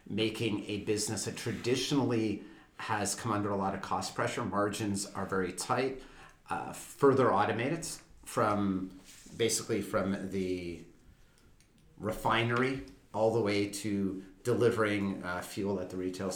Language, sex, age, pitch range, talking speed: Hungarian, male, 40-59, 95-115 Hz, 130 wpm